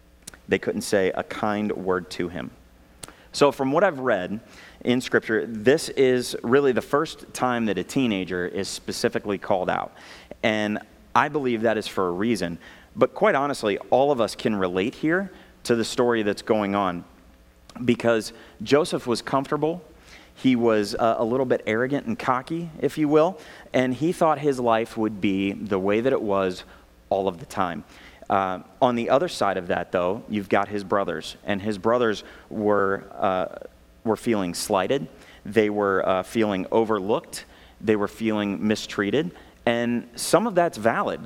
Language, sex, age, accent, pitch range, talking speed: English, male, 30-49, American, 95-125 Hz, 170 wpm